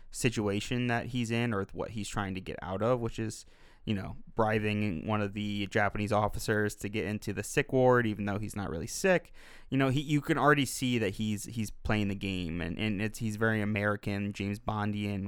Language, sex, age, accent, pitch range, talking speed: English, male, 20-39, American, 100-125 Hz, 215 wpm